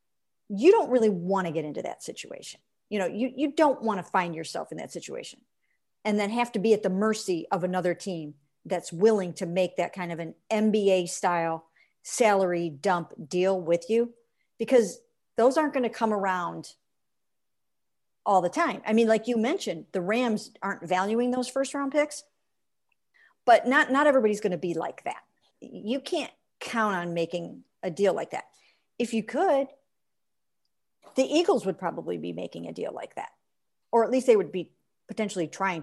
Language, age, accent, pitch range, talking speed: English, 50-69, American, 175-230 Hz, 180 wpm